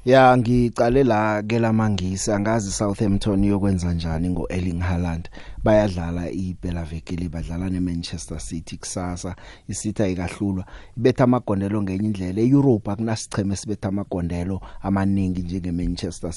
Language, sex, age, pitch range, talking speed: English, male, 30-49, 95-120 Hz, 95 wpm